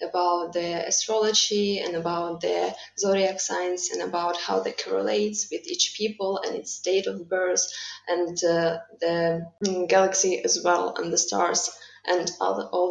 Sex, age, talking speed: female, 20-39, 165 wpm